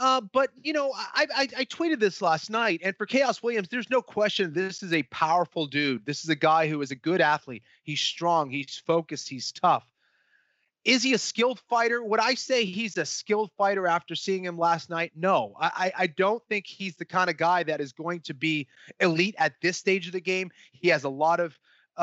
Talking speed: 225 wpm